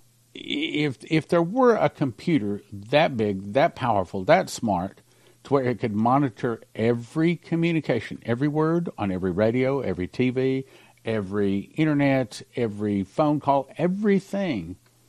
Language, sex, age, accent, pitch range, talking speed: English, male, 50-69, American, 105-135 Hz, 125 wpm